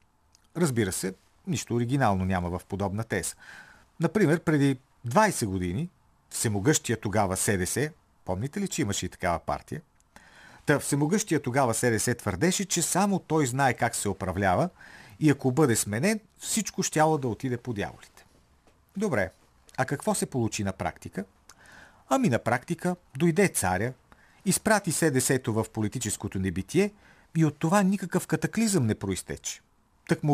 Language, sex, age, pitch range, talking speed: Bulgarian, male, 50-69, 105-170 Hz, 140 wpm